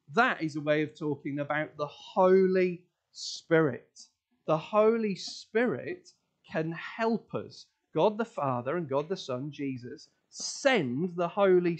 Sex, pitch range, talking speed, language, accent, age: male, 155-220 Hz, 135 wpm, English, British, 30-49